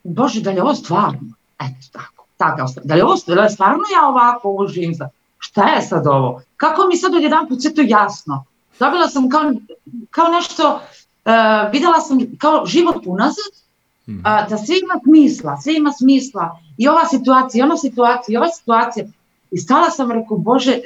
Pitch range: 170-260 Hz